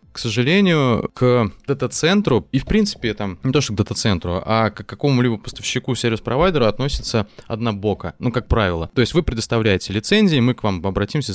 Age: 20-39